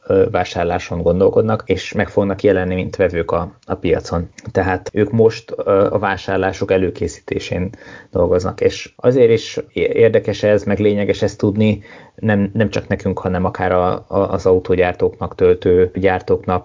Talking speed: 135 wpm